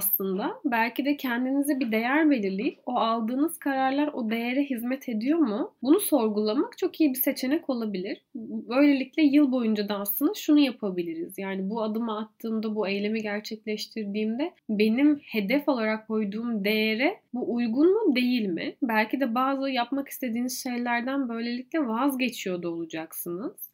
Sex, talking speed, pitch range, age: female, 140 wpm, 195-265 Hz, 10-29